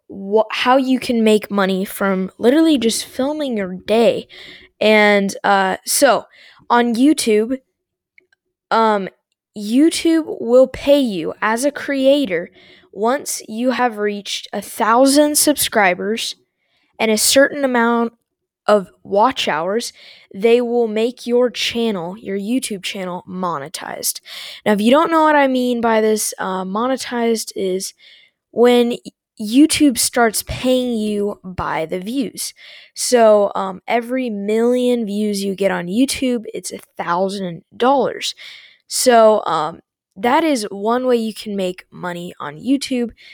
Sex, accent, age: female, American, 10-29